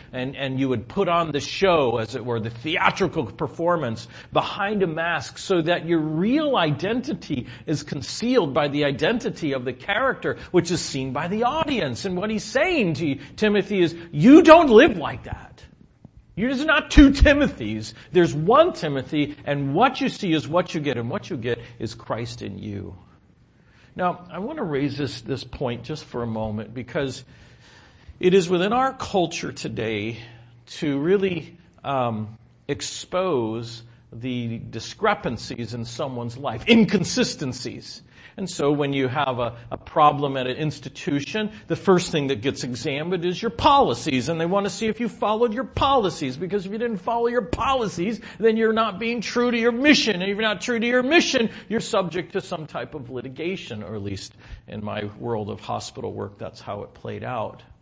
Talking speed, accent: 180 wpm, American